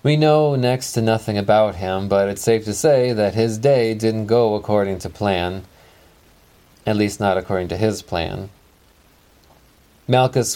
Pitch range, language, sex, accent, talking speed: 95-110 Hz, English, male, American, 160 wpm